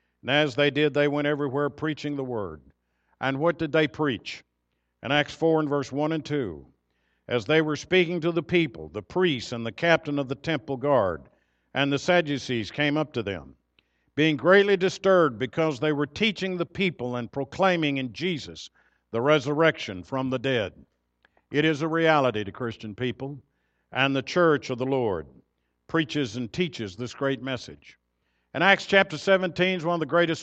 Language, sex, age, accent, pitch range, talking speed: English, male, 60-79, American, 125-170 Hz, 180 wpm